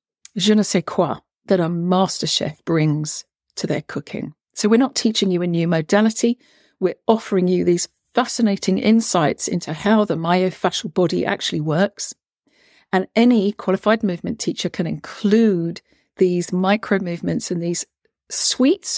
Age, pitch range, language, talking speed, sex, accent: 50-69, 165-210 Hz, English, 145 wpm, female, British